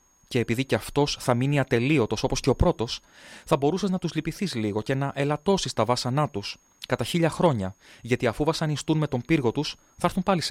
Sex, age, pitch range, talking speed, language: male, 30-49, 110-145 Hz, 210 wpm, Greek